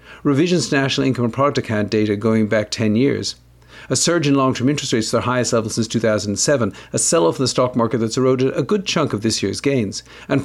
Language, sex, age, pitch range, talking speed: English, male, 50-69, 105-140 Hz, 230 wpm